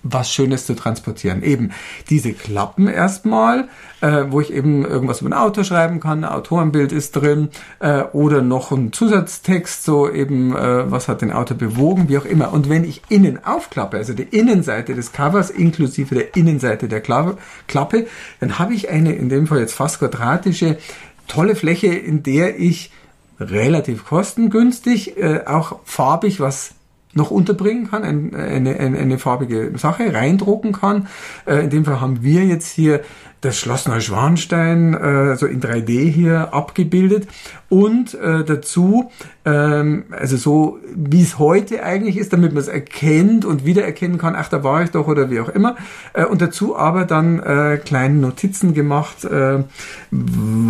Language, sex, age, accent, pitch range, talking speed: German, male, 50-69, German, 135-180 Hz, 165 wpm